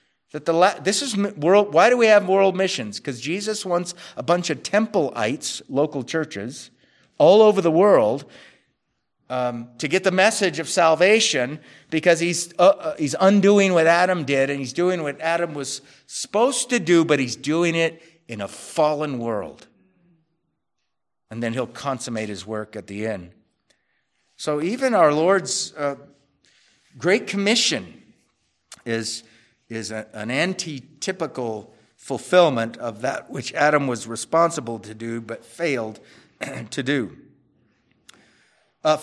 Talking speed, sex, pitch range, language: 145 wpm, male, 130-185 Hz, English